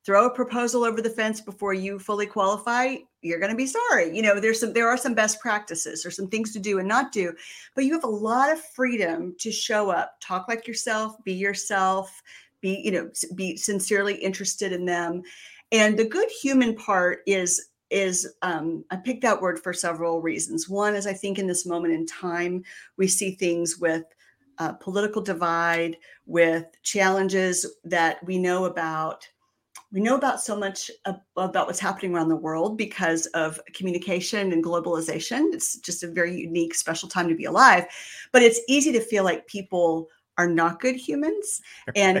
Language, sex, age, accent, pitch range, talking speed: English, female, 50-69, American, 170-215 Hz, 185 wpm